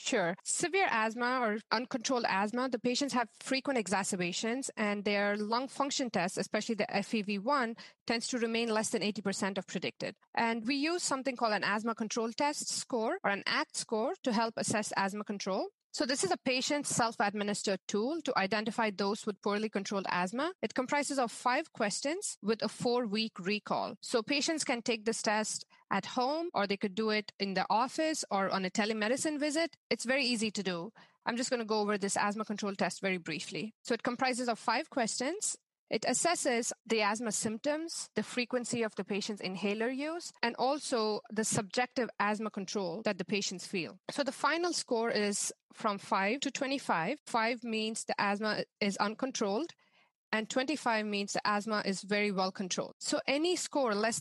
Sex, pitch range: female, 205-255 Hz